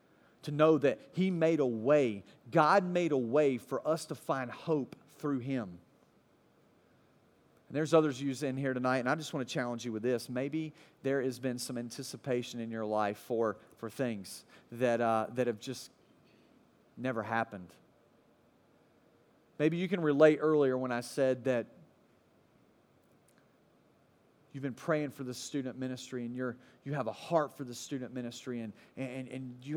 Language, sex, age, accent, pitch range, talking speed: English, male, 40-59, American, 120-150 Hz, 165 wpm